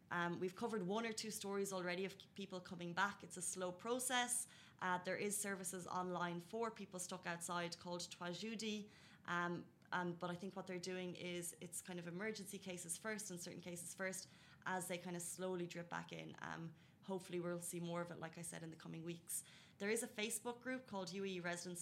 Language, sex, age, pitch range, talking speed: Arabic, female, 20-39, 175-195 Hz, 210 wpm